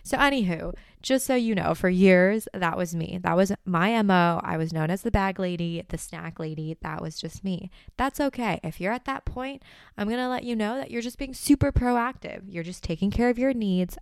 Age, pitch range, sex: 20-39, 165-220 Hz, female